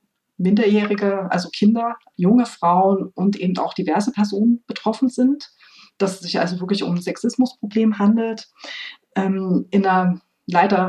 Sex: female